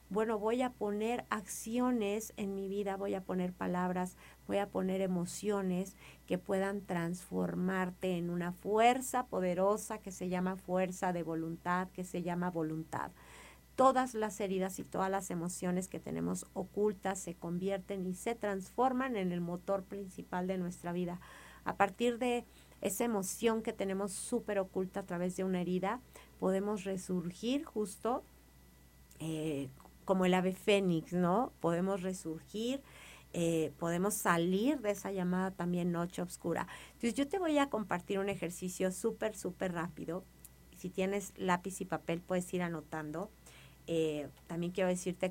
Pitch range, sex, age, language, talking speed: 175-200 Hz, female, 50-69, Spanish, 150 wpm